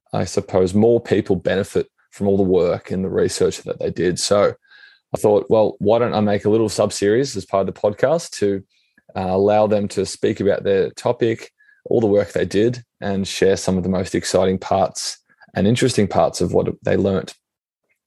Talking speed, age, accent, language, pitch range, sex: 205 wpm, 20-39, Australian, English, 100-125 Hz, male